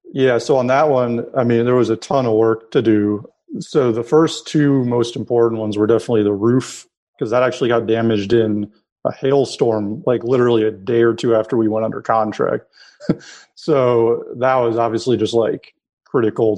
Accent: American